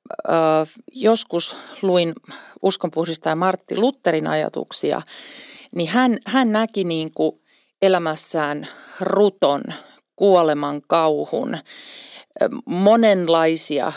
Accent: native